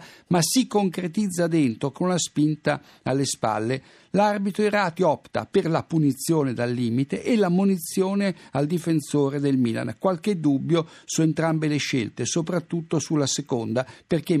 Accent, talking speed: native, 140 wpm